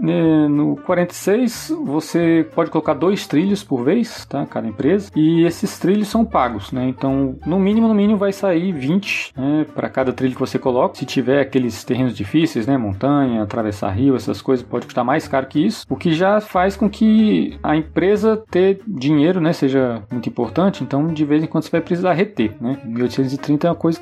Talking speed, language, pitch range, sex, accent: 195 wpm, Portuguese, 130-175 Hz, male, Brazilian